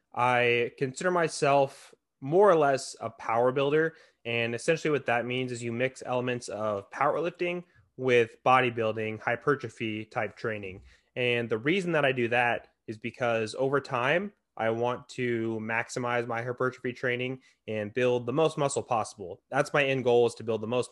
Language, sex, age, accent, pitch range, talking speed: English, male, 20-39, American, 115-130 Hz, 165 wpm